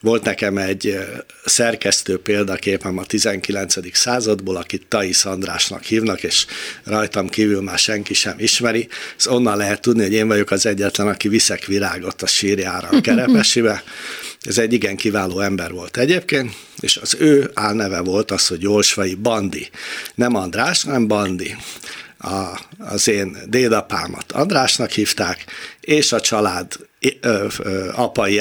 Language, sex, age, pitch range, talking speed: Hungarian, male, 60-79, 100-115 Hz, 135 wpm